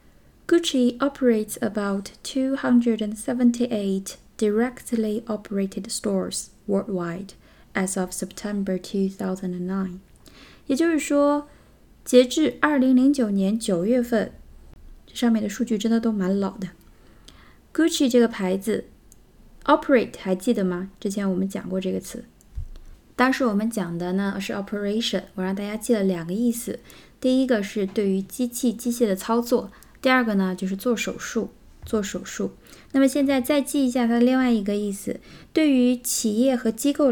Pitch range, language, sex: 195-255 Hz, Chinese, female